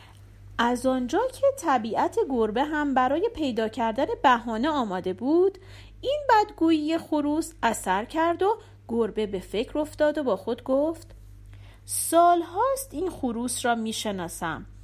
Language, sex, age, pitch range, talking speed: Persian, female, 40-59, 195-285 Hz, 125 wpm